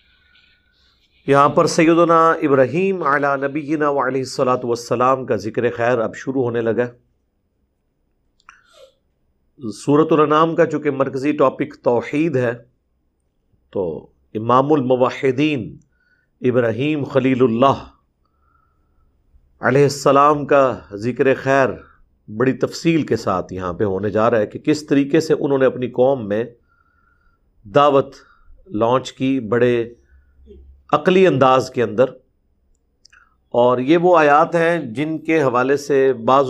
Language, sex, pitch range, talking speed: Urdu, male, 115-145 Hz, 120 wpm